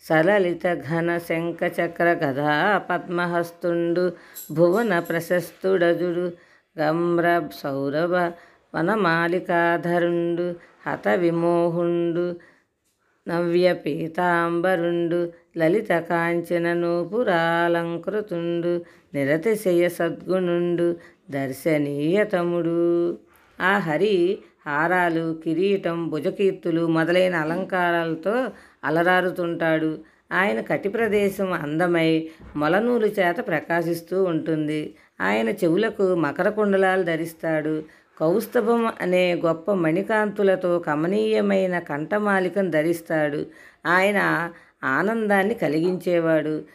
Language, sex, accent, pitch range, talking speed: Telugu, female, native, 165-180 Hz, 65 wpm